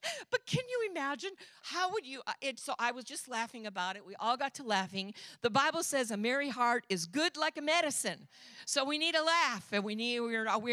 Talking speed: 220 wpm